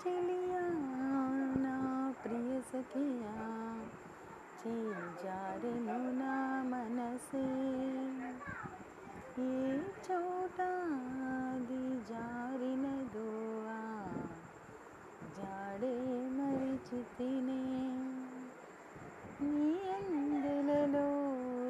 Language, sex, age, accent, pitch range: Telugu, female, 30-49, native, 240-275 Hz